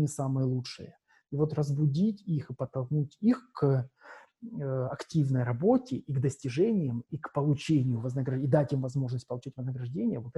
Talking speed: 155 wpm